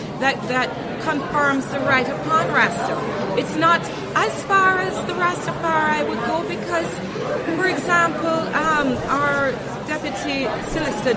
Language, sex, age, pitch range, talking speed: English, female, 30-49, 220-275 Hz, 125 wpm